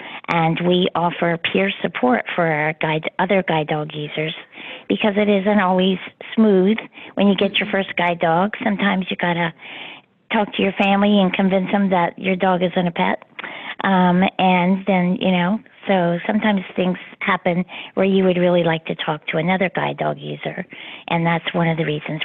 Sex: female